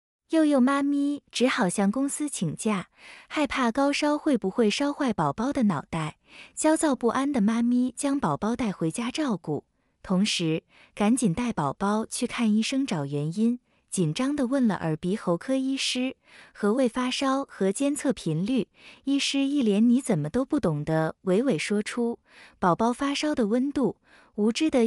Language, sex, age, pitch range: Chinese, female, 20-39, 190-275 Hz